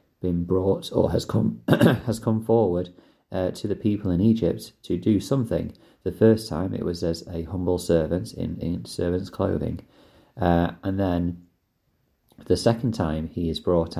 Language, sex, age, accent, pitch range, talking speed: English, male, 30-49, British, 85-105 Hz, 165 wpm